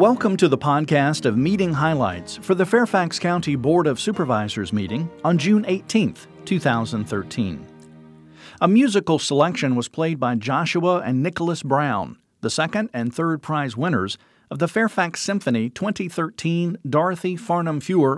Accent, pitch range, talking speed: American, 130-180 Hz, 140 wpm